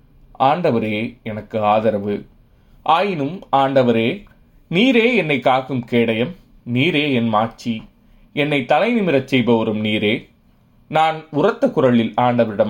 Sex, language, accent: male, Tamil, native